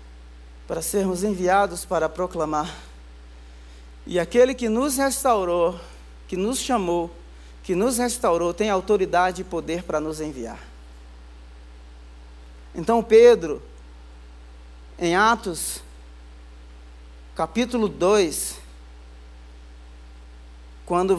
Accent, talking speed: Brazilian, 85 wpm